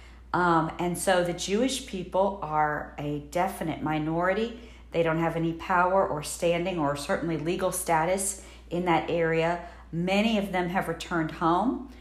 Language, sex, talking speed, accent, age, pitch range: English, female, 150 wpm, American, 50-69, 150-190 Hz